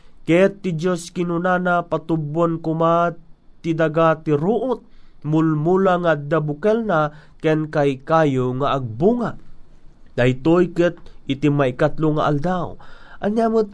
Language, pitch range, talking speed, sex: Filipino, 140-175 Hz, 95 wpm, male